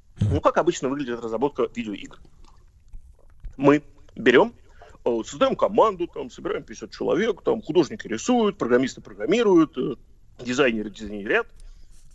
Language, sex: Russian, male